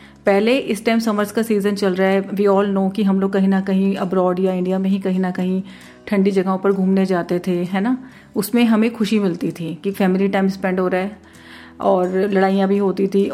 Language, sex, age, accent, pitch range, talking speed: Hindi, female, 30-49, native, 190-230 Hz, 230 wpm